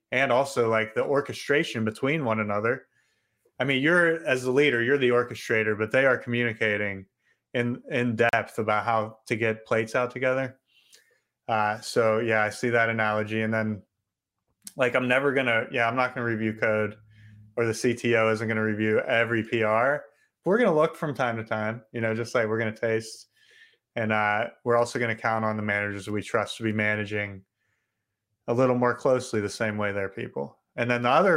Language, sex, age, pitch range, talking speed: English, male, 30-49, 110-125 Hz, 195 wpm